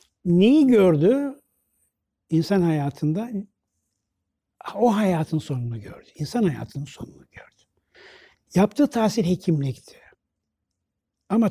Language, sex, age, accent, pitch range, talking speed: Turkish, male, 60-79, native, 140-195 Hz, 85 wpm